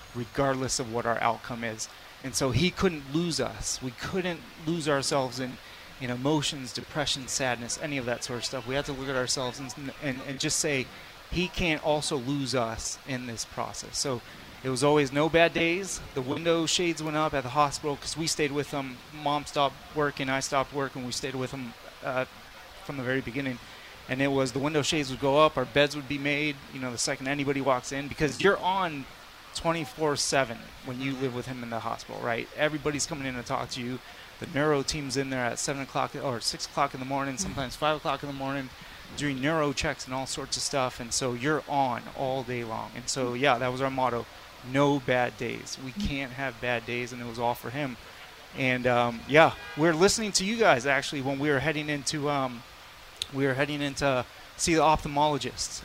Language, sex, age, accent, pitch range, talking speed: English, male, 30-49, American, 125-150 Hz, 215 wpm